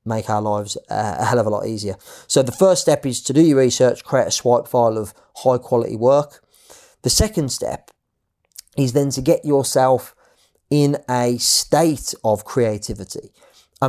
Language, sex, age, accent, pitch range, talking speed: English, male, 30-49, British, 115-140 Hz, 175 wpm